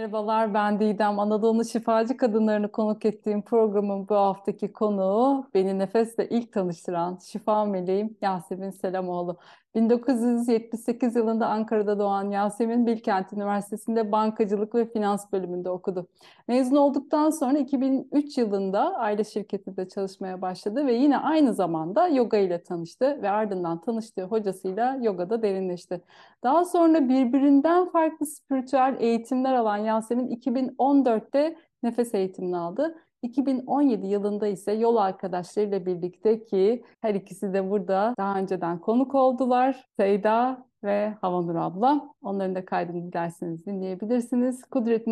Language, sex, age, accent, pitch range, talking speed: Turkish, female, 30-49, native, 195-245 Hz, 120 wpm